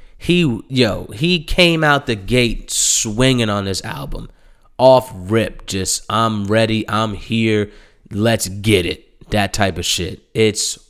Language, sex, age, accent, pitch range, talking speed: English, male, 20-39, American, 100-125 Hz, 145 wpm